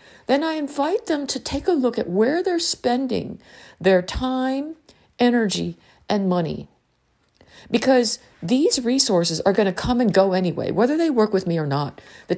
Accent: American